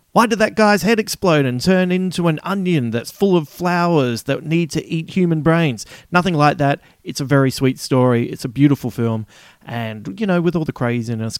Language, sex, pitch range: English, male, 120-170 Hz